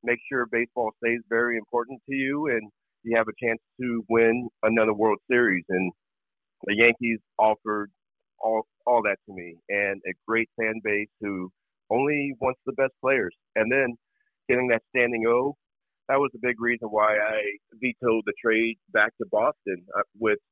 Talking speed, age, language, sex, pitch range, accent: 170 wpm, 40-59, English, male, 100-120 Hz, American